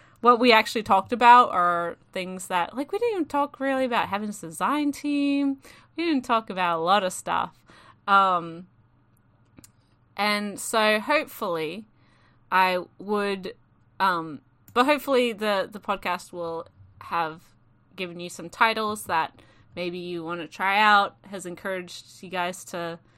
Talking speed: 150 wpm